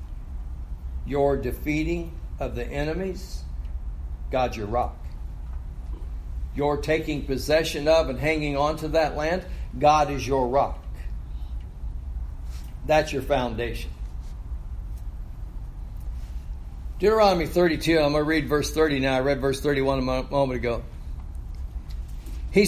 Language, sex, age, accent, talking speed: English, male, 60-79, American, 110 wpm